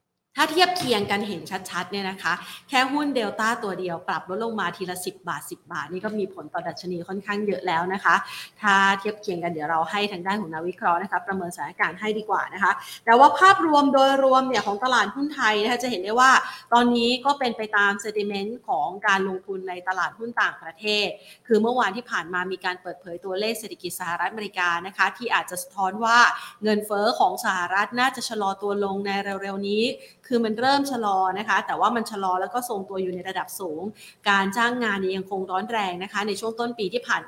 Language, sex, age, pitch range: Thai, female, 30-49, 185-235 Hz